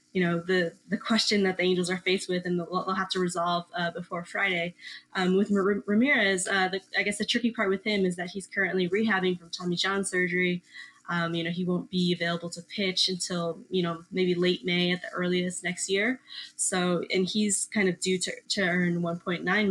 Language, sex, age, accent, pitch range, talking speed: English, female, 20-39, American, 175-195 Hz, 215 wpm